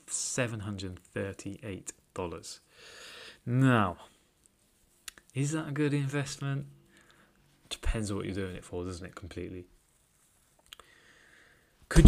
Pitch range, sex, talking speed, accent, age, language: 95-120 Hz, male, 110 wpm, British, 20-39, English